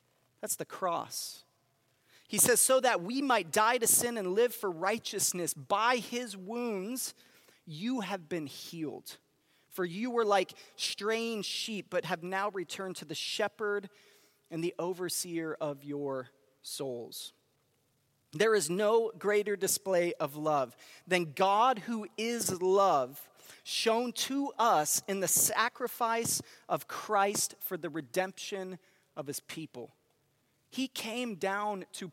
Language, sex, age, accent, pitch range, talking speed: English, male, 30-49, American, 170-225 Hz, 135 wpm